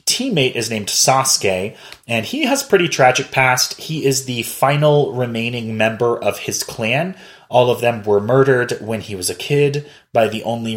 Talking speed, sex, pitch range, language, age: 185 wpm, male, 105-135 Hz, English, 30-49